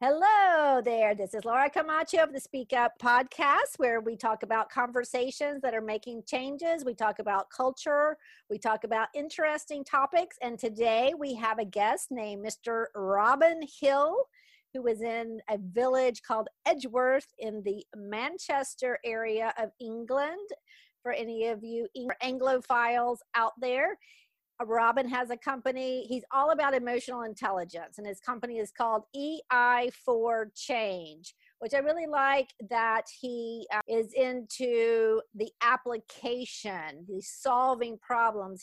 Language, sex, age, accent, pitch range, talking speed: English, female, 50-69, American, 220-265 Hz, 140 wpm